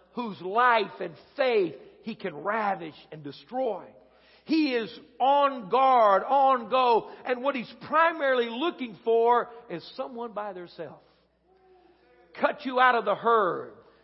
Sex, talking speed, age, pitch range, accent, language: male, 135 wpm, 50-69, 220-275 Hz, American, English